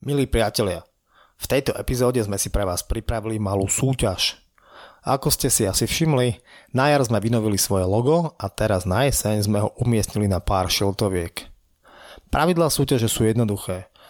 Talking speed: 160 wpm